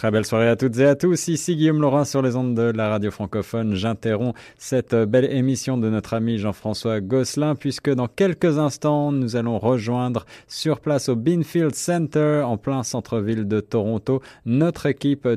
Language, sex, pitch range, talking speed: French, male, 105-130 Hz, 180 wpm